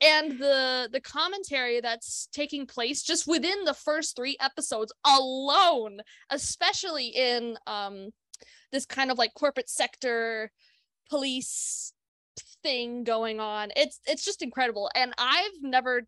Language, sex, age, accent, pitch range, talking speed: English, female, 20-39, American, 225-275 Hz, 125 wpm